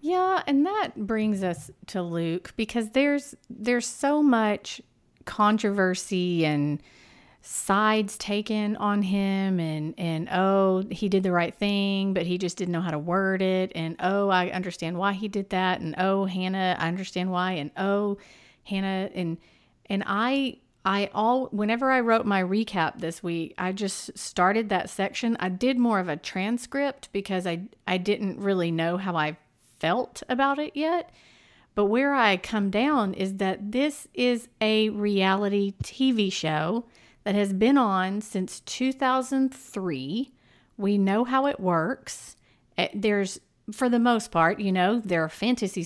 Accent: American